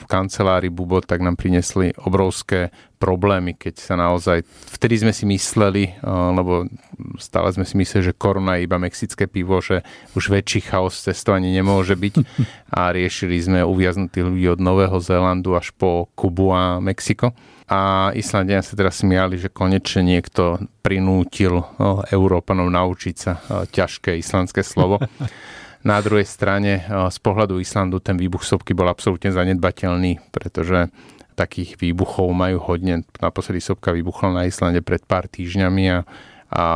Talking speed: 145 wpm